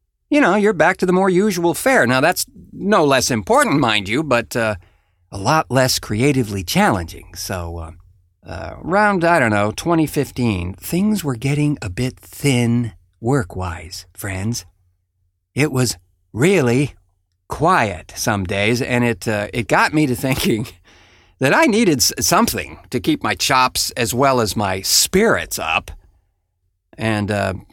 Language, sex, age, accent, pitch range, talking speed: English, male, 50-69, American, 90-140 Hz, 145 wpm